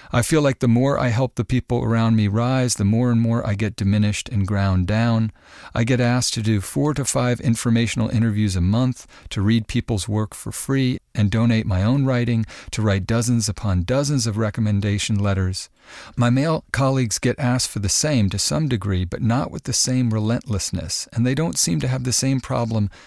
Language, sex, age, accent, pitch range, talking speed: English, male, 50-69, American, 100-125 Hz, 205 wpm